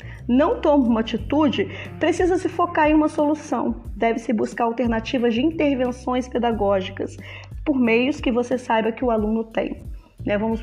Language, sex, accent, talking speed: Portuguese, female, Brazilian, 145 wpm